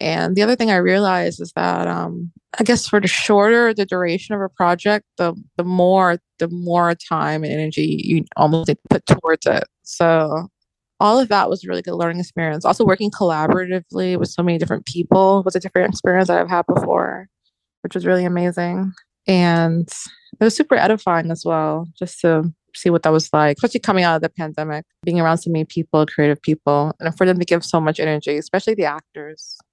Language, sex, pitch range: English, female, 155-185 Hz